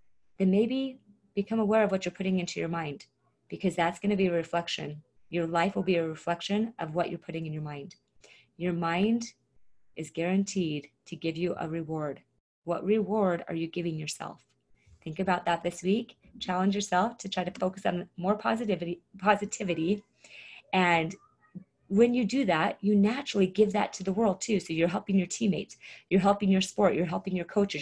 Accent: American